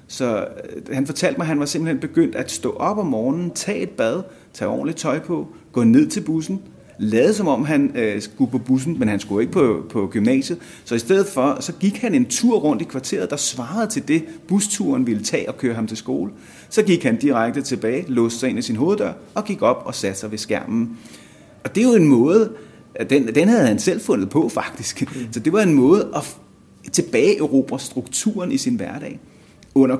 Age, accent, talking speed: 30-49, native, 215 wpm